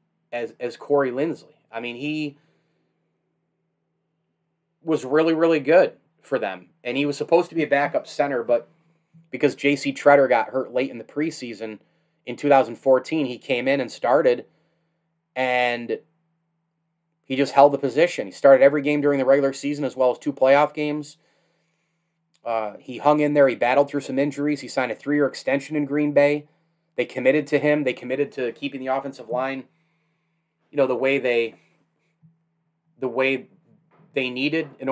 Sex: male